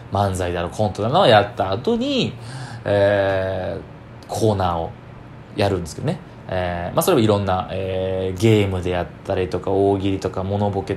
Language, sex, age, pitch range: Japanese, male, 20-39, 100-135 Hz